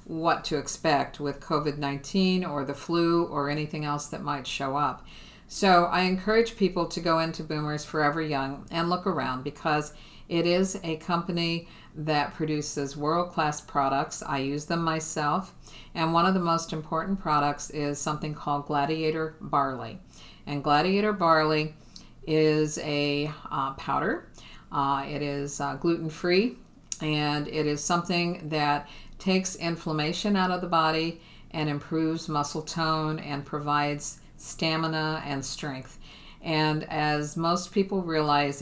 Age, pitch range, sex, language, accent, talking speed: 50-69, 145-170 Hz, female, English, American, 140 wpm